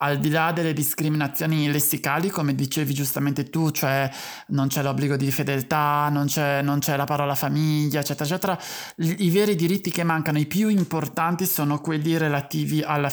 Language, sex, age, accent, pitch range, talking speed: Italian, male, 20-39, native, 140-165 Hz, 165 wpm